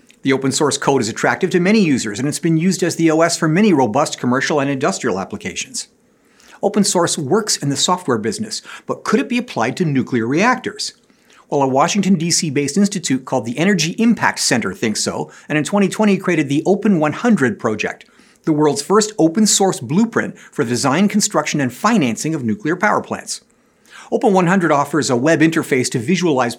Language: English